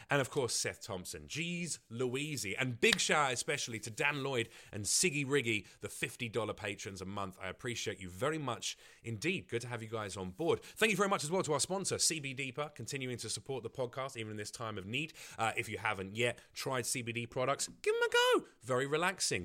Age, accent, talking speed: 30-49, British, 220 wpm